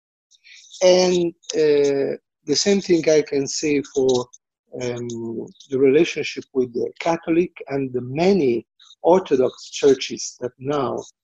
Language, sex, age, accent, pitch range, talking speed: English, male, 50-69, Italian, 130-175 Hz, 115 wpm